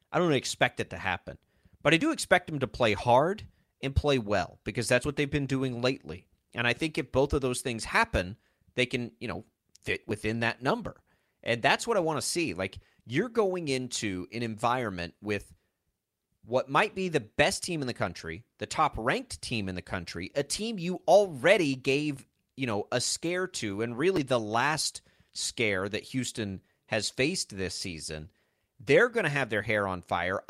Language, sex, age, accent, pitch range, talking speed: English, male, 30-49, American, 100-145 Hz, 195 wpm